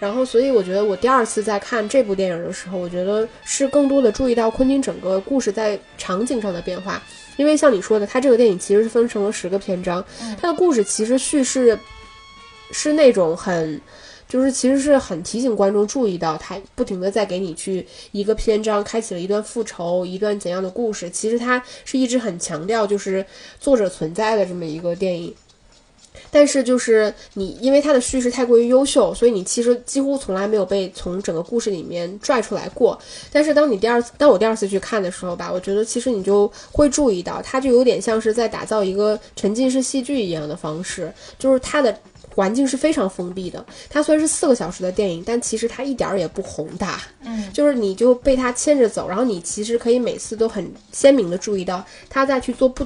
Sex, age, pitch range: female, 10-29, 195-255 Hz